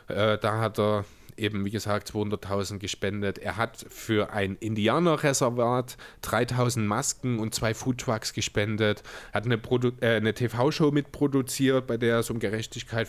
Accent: German